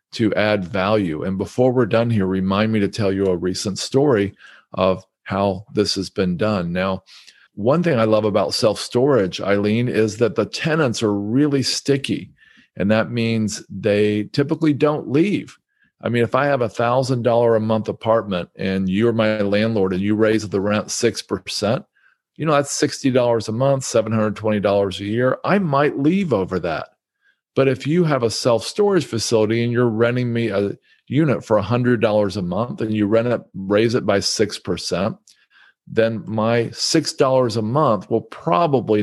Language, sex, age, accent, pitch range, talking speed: English, male, 40-59, American, 105-130 Hz, 170 wpm